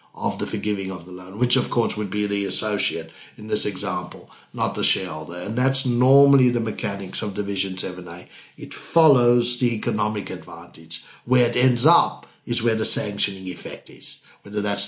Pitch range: 105-140 Hz